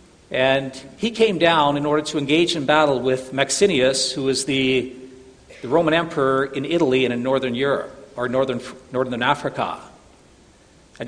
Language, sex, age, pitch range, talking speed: English, male, 50-69, 140-180 Hz, 155 wpm